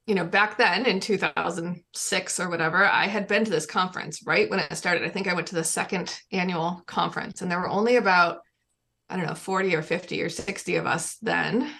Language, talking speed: English, 220 wpm